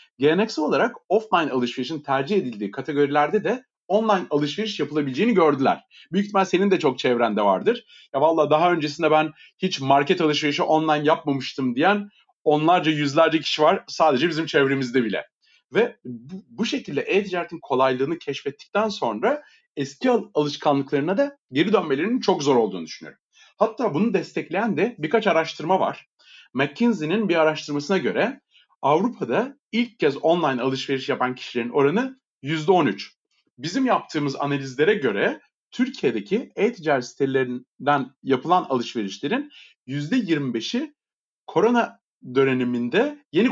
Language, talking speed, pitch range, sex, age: Turkish, 120 wpm, 140-195 Hz, male, 40-59